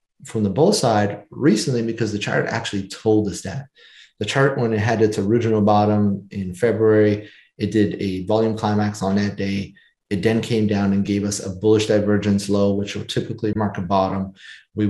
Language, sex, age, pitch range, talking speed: English, male, 30-49, 105-120 Hz, 195 wpm